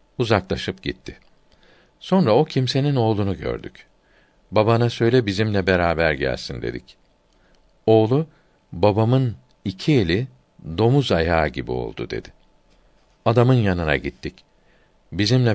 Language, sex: Turkish, male